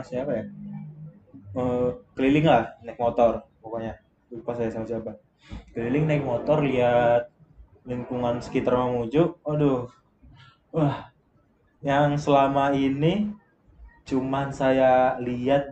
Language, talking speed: Indonesian, 105 wpm